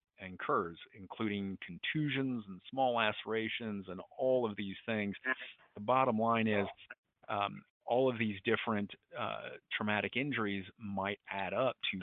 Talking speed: 140 wpm